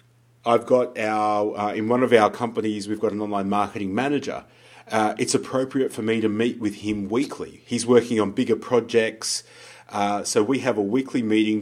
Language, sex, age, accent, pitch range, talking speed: English, male, 30-49, Australian, 105-125 Hz, 190 wpm